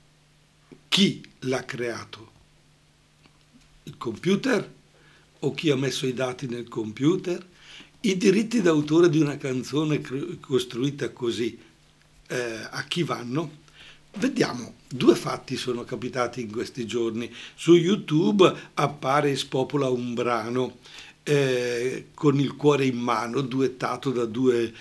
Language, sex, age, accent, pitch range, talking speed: Italian, male, 60-79, native, 125-155 Hz, 120 wpm